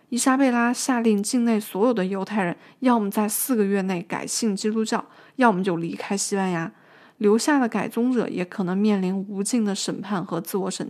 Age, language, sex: 20-39, Chinese, female